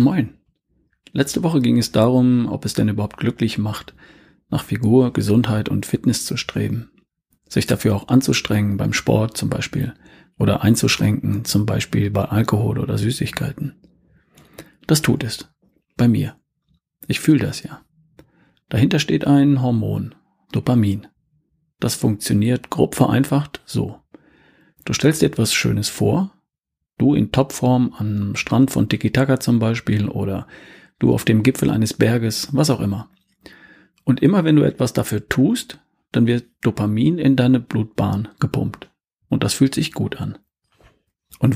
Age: 40-59